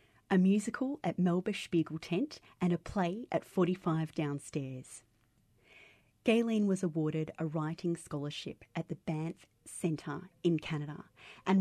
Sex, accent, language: female, Australian, English